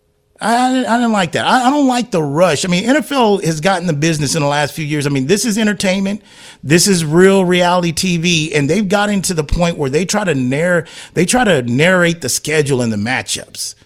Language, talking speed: English, 215 wpm